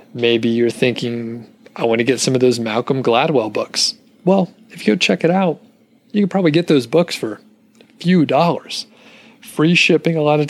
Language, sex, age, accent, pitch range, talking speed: English, male, 30-49, American, 115-165 Hz, 200 wpm